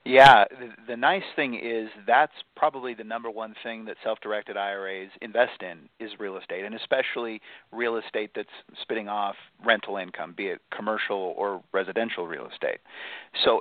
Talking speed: 160 wpm